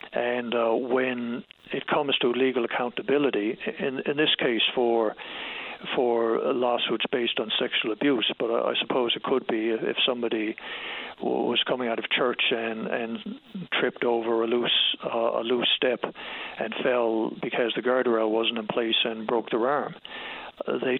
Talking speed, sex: 170 wpm, male